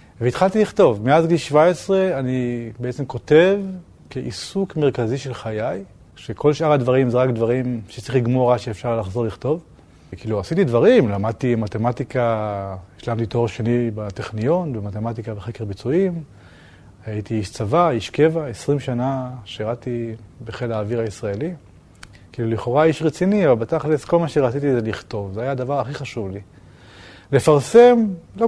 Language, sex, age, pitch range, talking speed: Hebrew, male, 30-49, 110-155 Hz, 140 wpm